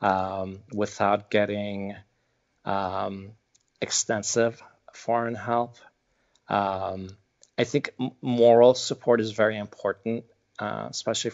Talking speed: 90 wpm